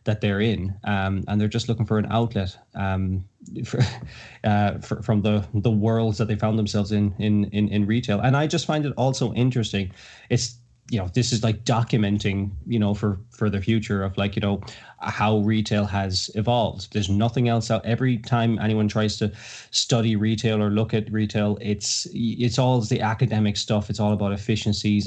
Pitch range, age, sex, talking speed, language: 100-115 Hz, 20-39, male, 195 wpm, English